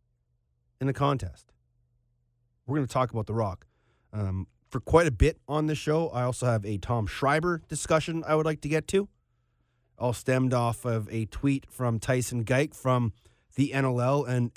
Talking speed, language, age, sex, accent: 180 wpm, English, 30-49, male, American